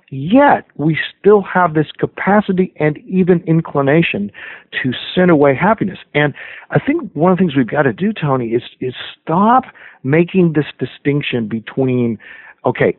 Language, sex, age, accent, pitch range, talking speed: English, male, 50-69, American, 135-185 Hz, 155 wpm